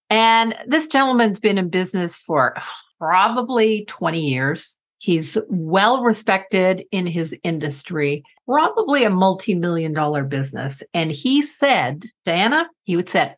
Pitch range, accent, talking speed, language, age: 165-230 Hz, American, 120 wpm, English, 50-69